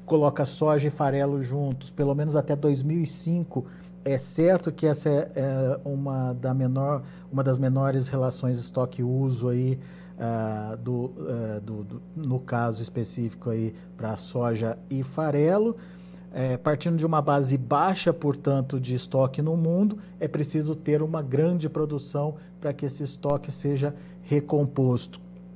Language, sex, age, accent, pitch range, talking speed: Portuguese, male, 50-69, Brazilian, 130-155 Hz, 120 wpm